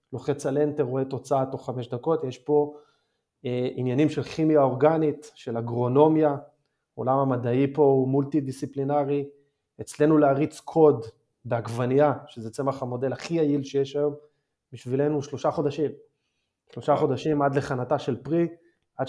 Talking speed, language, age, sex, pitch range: 140 wpm, Hebrew, 20-39, male, 125-150 Hz